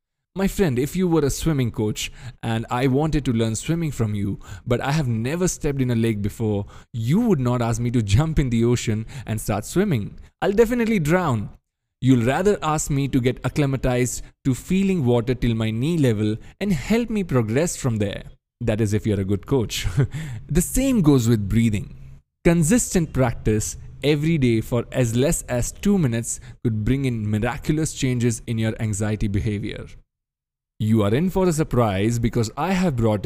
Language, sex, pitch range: English, male, 110-150 Hz